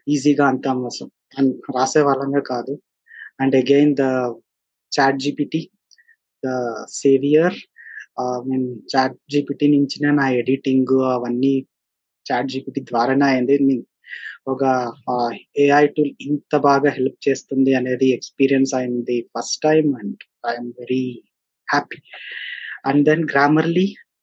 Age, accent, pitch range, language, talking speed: 20-39, native, 130-145 Hz, Telugu, 95 wpm